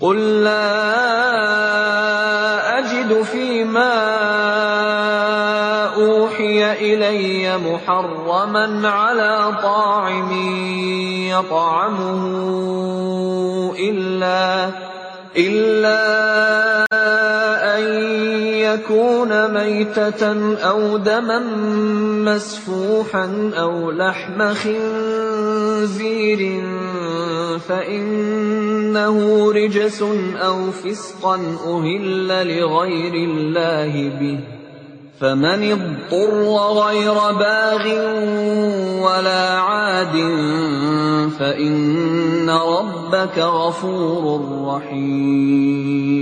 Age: 30-49